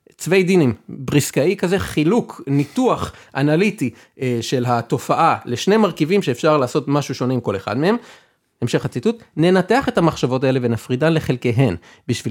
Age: 30-49